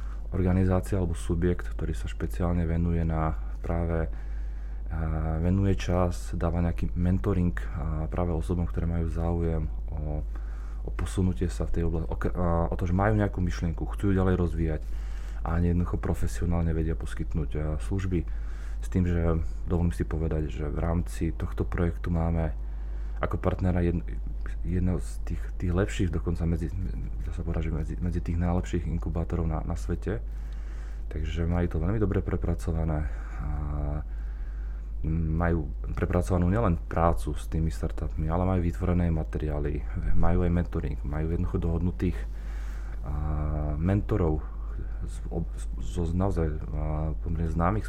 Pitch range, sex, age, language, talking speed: 75-90 Hz, male, 30-49, Slovak, 135 wpm